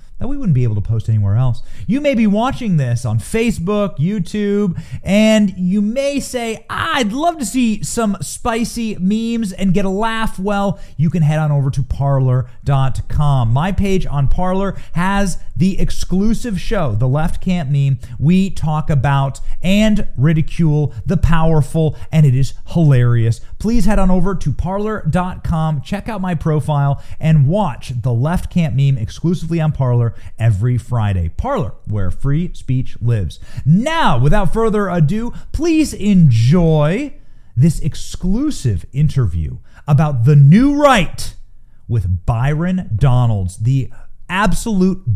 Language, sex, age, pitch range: English, male, 30-49, 125-195 Hz